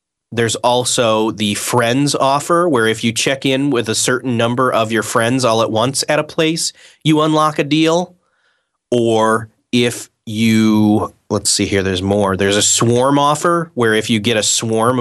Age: 30-49